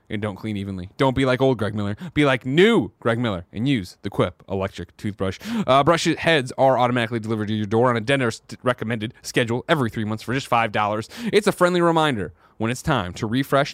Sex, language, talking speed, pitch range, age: male, English, 220 wpm, 105-165 Hz, 30-49